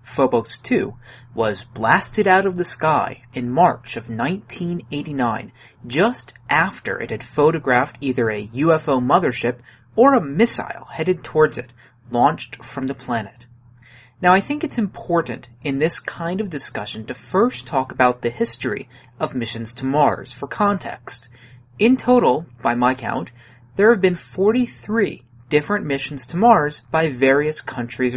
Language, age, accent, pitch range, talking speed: English, 30-49, American, 120-175 Hz, 145 wpm